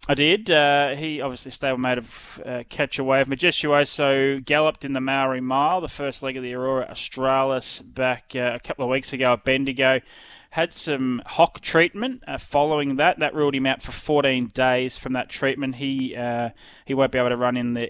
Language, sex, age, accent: English, male, 20-39, Australian